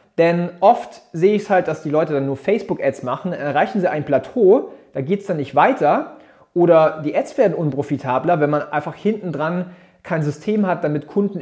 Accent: German